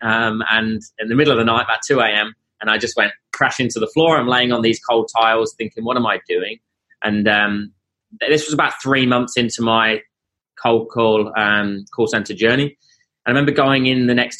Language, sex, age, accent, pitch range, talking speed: English, male, 20-39, British, 110-125 Hz, 215 wpm